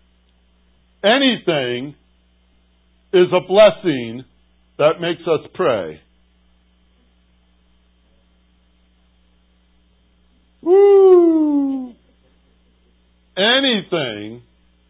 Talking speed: 40 wpm